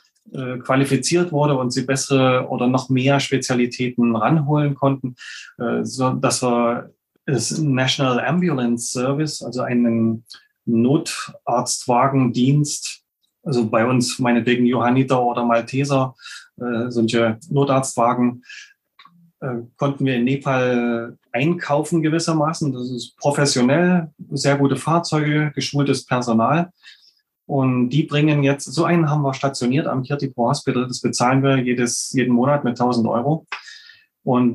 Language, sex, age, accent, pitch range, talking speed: German, male, 20-39, German, 120-140 Hz, 115 wpm